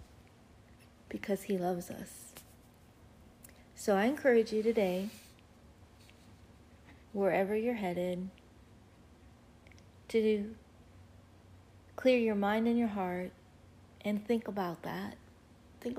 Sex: female